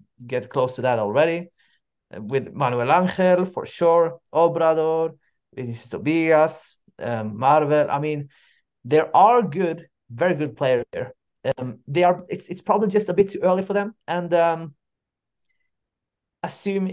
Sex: male